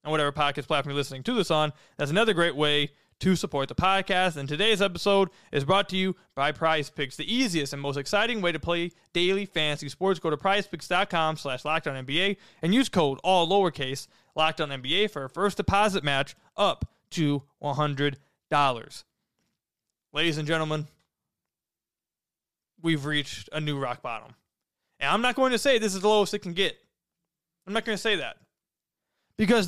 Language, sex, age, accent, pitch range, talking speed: English, male, 20-39, American, 150-210 Hz, 175 wpm